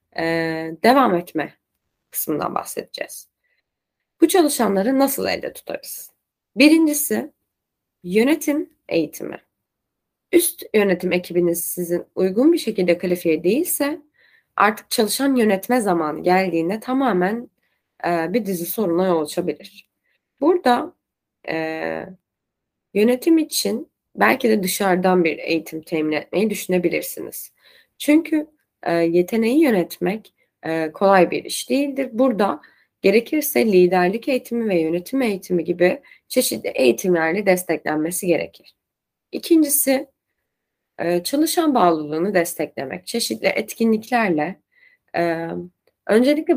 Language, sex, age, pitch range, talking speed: Turkish, female, 20-39, 175-255 Hz, 95 wpm